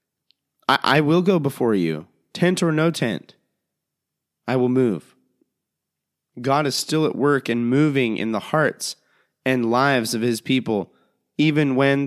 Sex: male